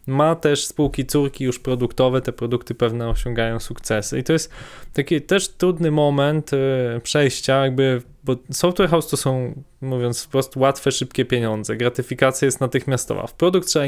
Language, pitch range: Polish, 125-145 Hz